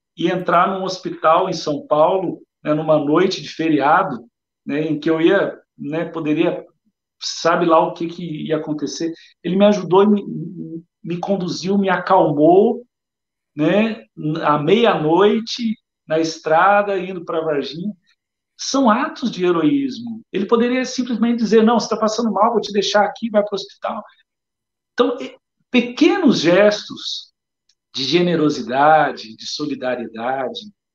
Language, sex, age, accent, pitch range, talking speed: Portuguese, male, 50-69, Brazilian, 150-210 Hz, 140 wpm